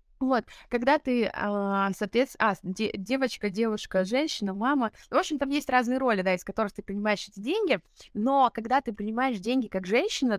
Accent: native